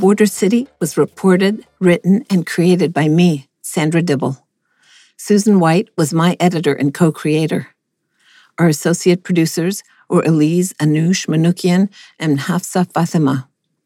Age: 60-79